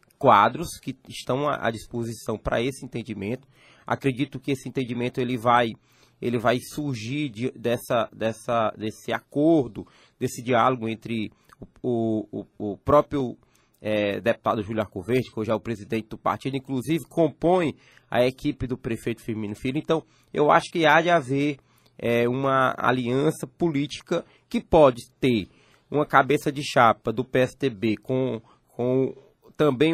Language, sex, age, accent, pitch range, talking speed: Portuguese, male, 20-39, Brazilian, 115-145 Hz, 145 wpm